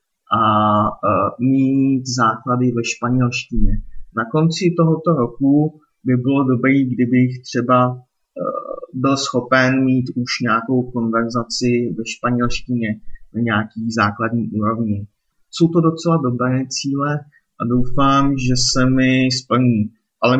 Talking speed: 110 wpm